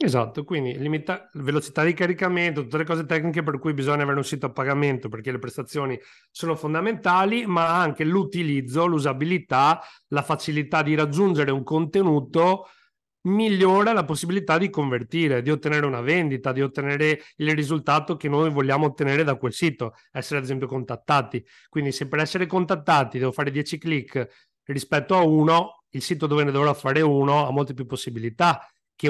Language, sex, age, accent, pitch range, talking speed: Italian, male, 40-59, native, 130-160 Hz, 165 wpm